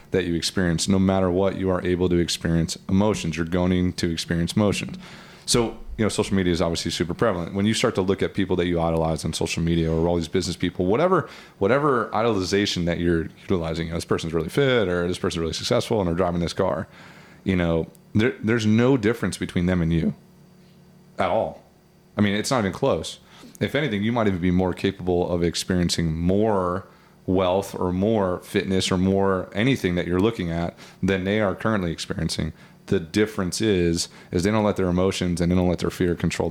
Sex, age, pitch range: male, 30-49, 85-105 Hz